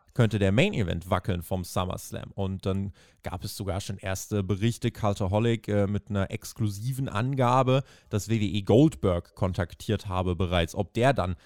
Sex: male